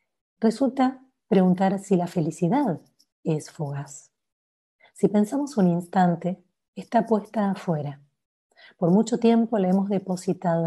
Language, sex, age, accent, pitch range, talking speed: Spanish, female, 30-49, American, 170-210 Hz, 110 wpm